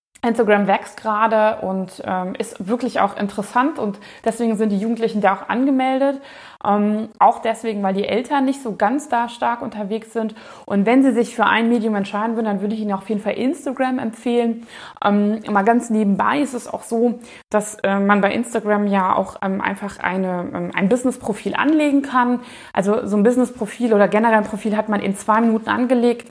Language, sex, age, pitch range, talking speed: German, female, 20-39, 205-240 Hz, 195 wpm